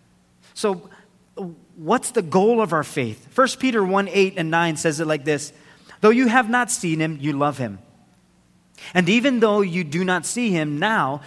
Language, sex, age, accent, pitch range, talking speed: English, male, 30-49, American, 150-215 Hz, 185 wpm